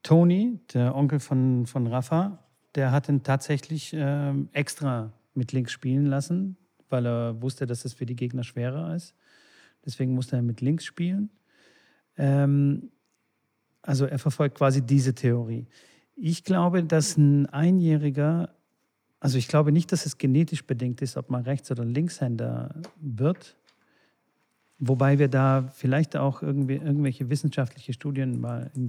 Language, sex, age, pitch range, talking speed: German, male, 40-59, 130-155 Hz, 145 wpm